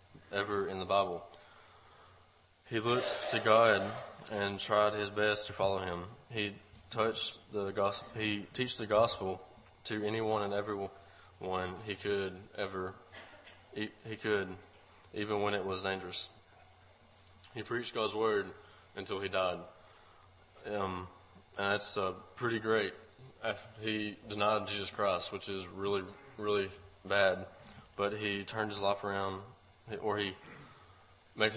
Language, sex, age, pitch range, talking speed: English, male, 20-39, 95-105 Hz, 130 wpm